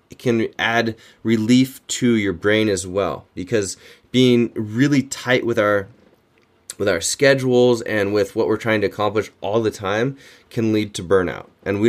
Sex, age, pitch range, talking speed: male, 20-39, 95-115 Hz, 170 wpm